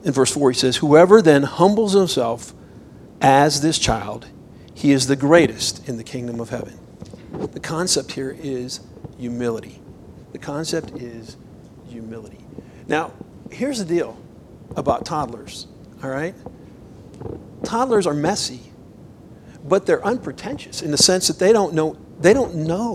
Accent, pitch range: American, 140-200 Hz